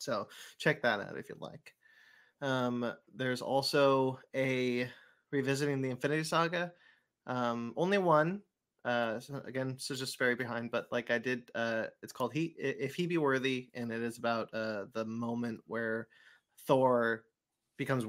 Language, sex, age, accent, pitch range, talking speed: English, male, 20-39, American, 115-165 Hz, 160 wpm